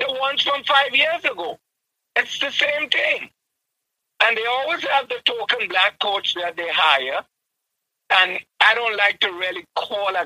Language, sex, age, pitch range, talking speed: English, male, 60-79, 205-275 Hz, 170 wpm